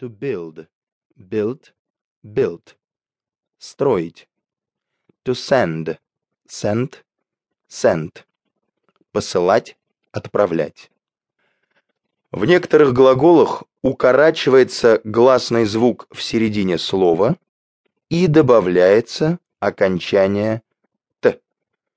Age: 30-49